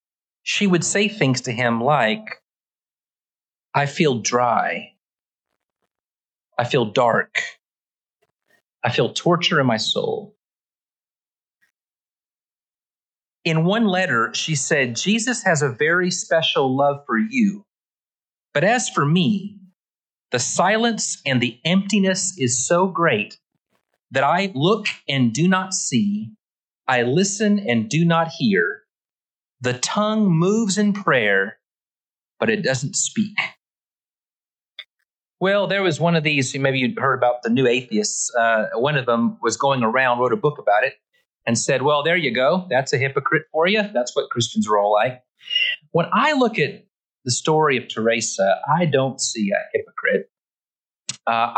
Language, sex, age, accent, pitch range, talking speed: English, male, 30-49, American, 125-200 Hz, 140 wpm